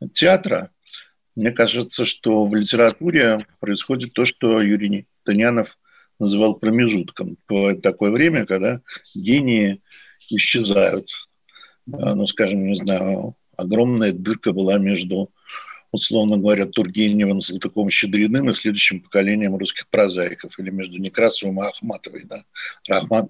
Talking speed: 115 wpm